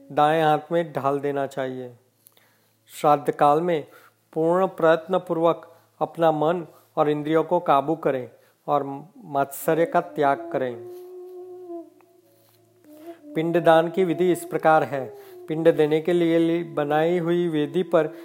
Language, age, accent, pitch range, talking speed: Hindi, 40-59, native, 150-185 Hz, 130 wpm